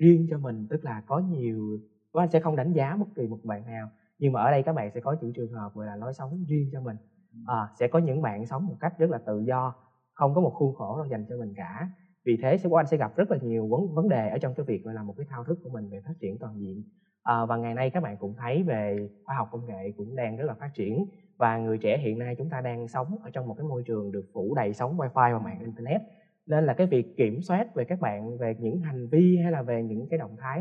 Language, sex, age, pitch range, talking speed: Vietnamese, male, 20-39, 110-160 Hz, 285 wpm